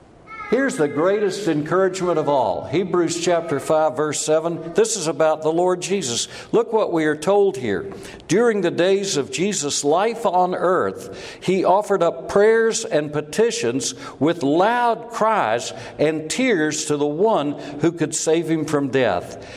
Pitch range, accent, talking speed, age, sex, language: 145-200 Hz, American, 155 wpm, 60-79, male, English